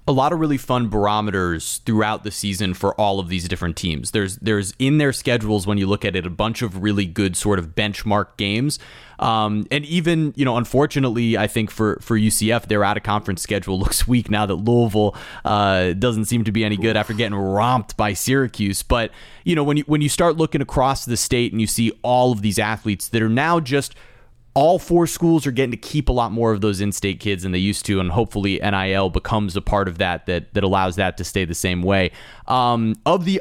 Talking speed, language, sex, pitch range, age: 225 wpm, English, male, 100-130 Hz, 30-49